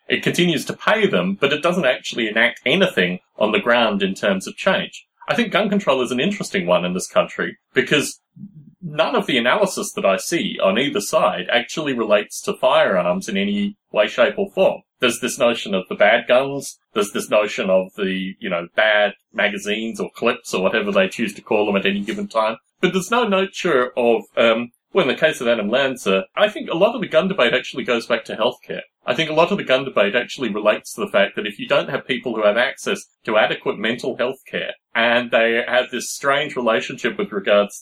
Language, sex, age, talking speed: English, male, 30-49, 220 wpm